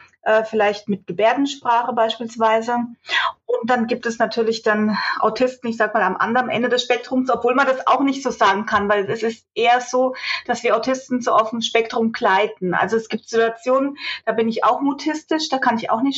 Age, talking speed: 30-49, 200 wpm